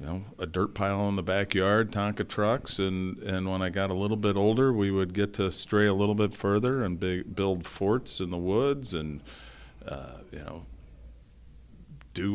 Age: 40-59